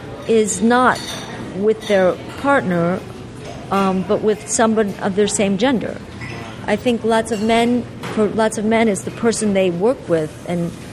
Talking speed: 160 wpm